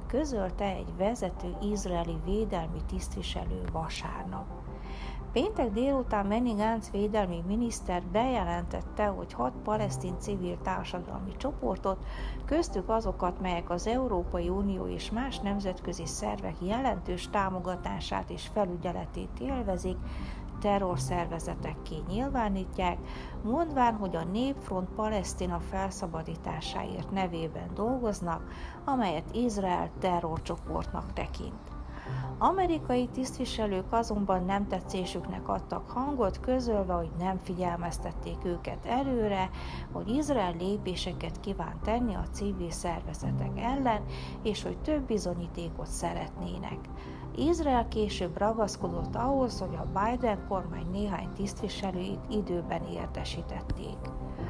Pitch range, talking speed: 170-220 Hz, 100 wpm